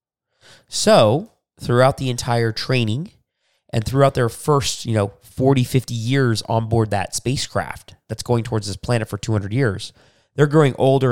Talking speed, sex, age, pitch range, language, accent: 155 wpm, male, 30-49, 110-135 Hz, English, American